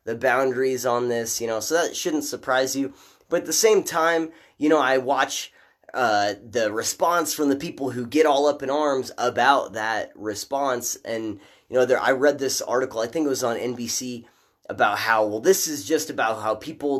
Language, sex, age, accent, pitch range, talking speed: English, male, 20-39, American, 125-165 Hz, 205 wpm